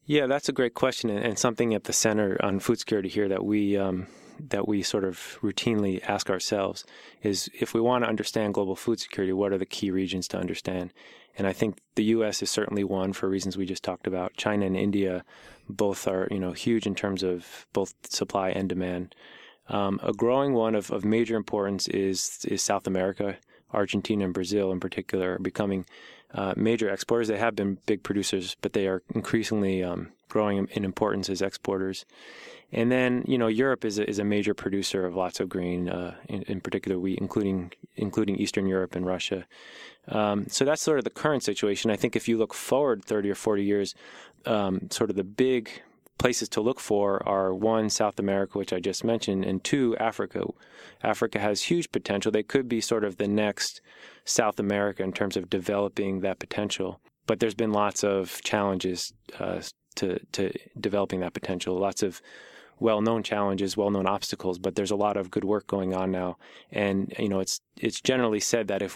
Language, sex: English, male